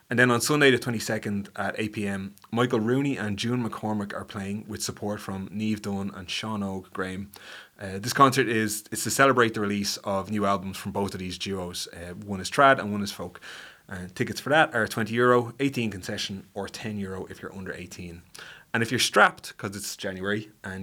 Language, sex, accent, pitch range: English, male, Irish, 95-115 Hz